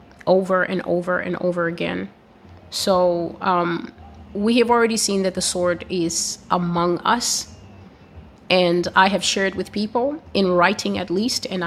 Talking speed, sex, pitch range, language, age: 150 wpm, female, 170-200 Hz, English, 30-49